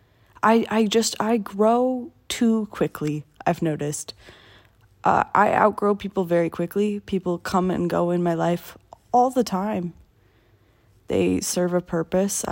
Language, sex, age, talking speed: English, female, 20-39, 140 wpm